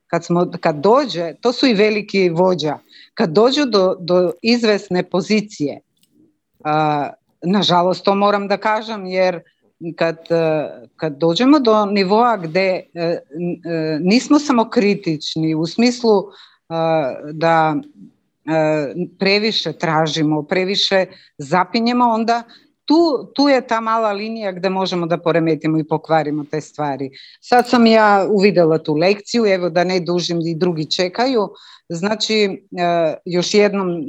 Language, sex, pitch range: Croatian, female, 170-220 Hz